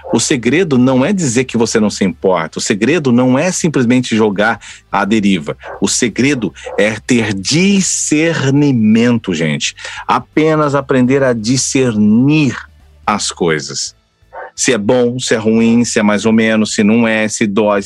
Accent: Brazilian